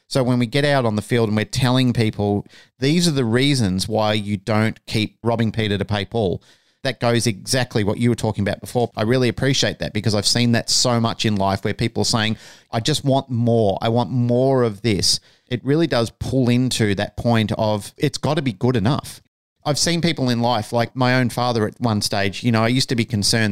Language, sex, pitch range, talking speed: English, male, 105-125 Hz, 235 wpm